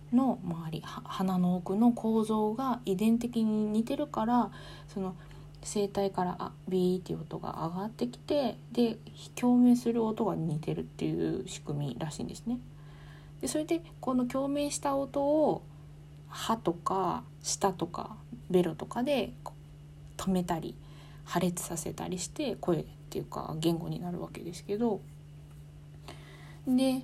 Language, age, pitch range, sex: Japanese, 20-39, 150-230 Hz, female